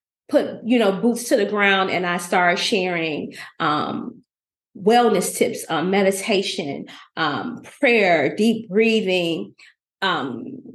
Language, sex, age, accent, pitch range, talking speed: English, female, 30-49, American, 180-235 Hz, 115 wpm